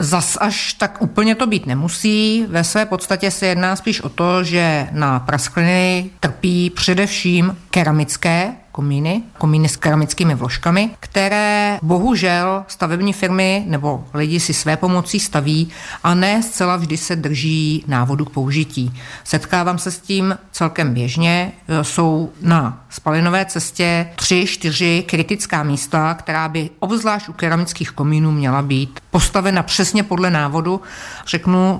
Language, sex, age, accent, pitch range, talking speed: Czech, female, 50-69, native, 155-185 Hz, 135 wpm